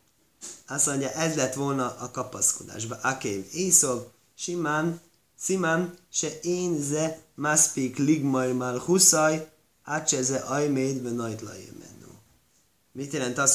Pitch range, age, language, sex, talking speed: 125-160 Hz, 30-49, Hungarian, male, 115 wpm